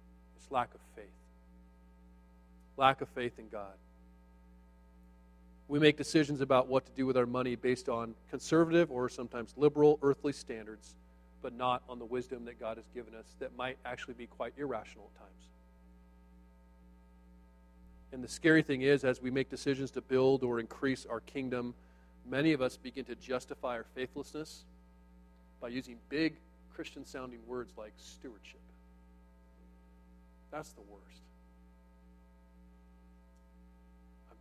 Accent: American